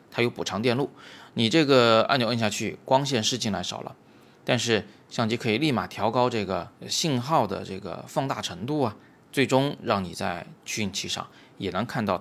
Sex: male